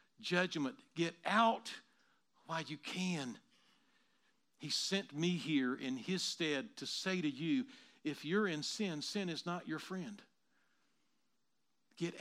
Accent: American